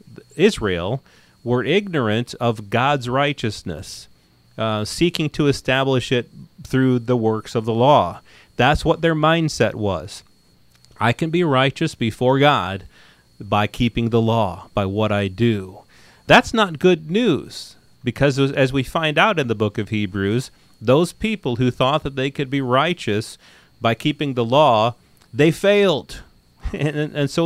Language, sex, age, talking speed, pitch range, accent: English, male, 40-59, 150 wpm, 110-145 Hz, American